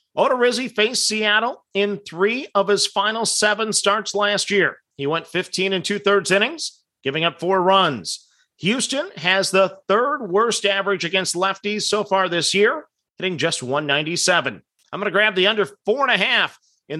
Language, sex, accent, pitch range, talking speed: English, male, American, 170-220 Hz, 170 wpm